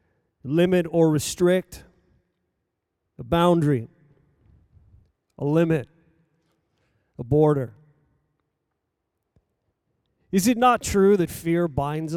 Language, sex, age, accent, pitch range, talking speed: English, male, 40-59, American, 120-175 Hz, 80 wpm